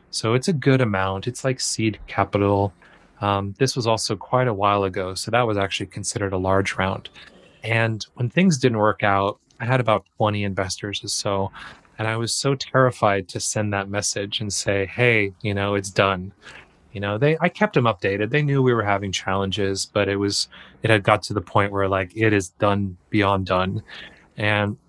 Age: 30-49